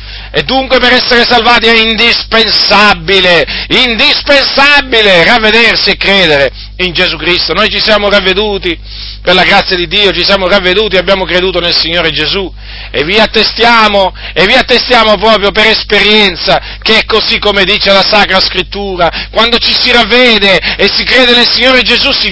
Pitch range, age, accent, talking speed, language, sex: 175-220 Hz, 40-59, native, 160 wpm, Italian, male